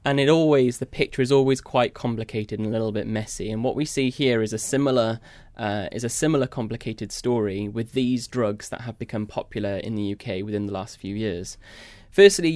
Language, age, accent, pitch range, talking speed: English, 20-39, British, 105-125 Hz, 210 wpm